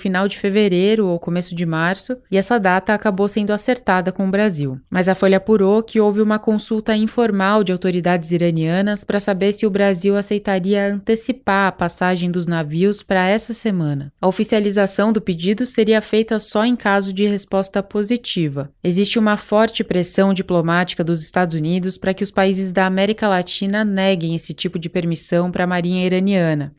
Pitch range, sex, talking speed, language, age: 180-210 Hz, female, 175 wpm, Portuguese, 20-39